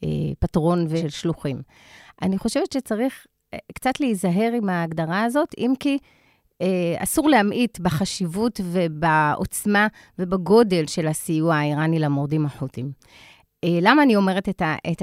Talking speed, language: 110 wpm, Hebrew